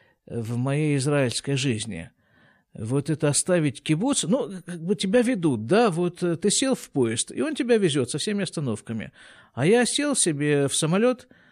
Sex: male